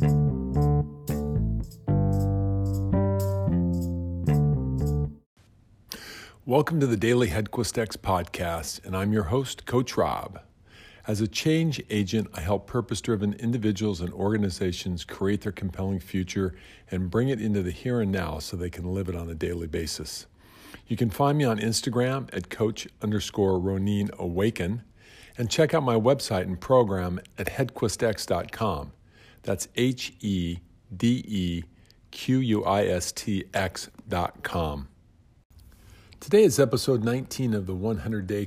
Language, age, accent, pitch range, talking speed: English, 50-69, American, 90-115 Hz, 130 wpm